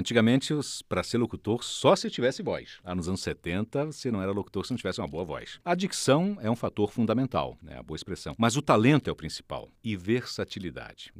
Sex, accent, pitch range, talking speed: male, Brazilian, 90-130 Hz, 215 wpm